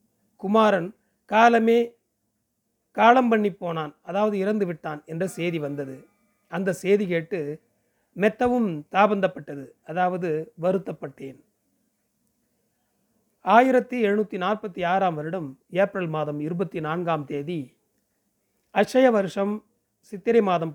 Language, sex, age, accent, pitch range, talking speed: Tamil, male, 40-59, native, 165-215 Hz, 85 wpm